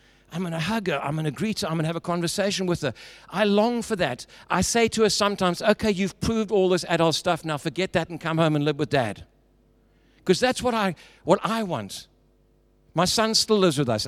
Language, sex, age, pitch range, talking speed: English, male, 60-79, 120-185 Hz, 230 wpm